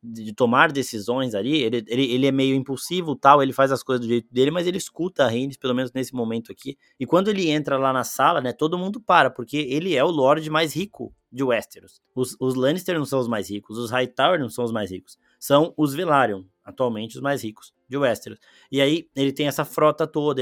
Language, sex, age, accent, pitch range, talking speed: Portuguese, male, 20-39, Brazilian, 125-165 Hz, 235 wpm